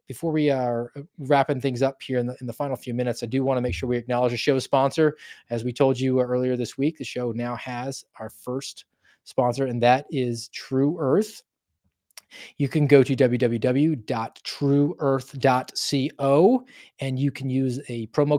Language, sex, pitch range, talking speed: English, male, 120-145 Hz, 180 wpm